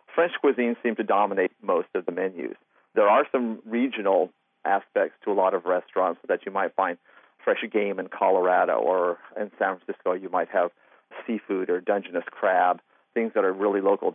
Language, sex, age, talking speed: English, male, 40-59, 180 wpm